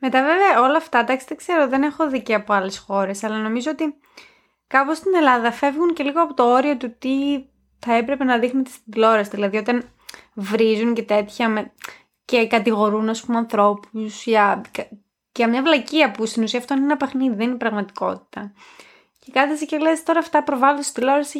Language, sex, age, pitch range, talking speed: Greek, female, 20-39, 220-305 Hz, 180 wpm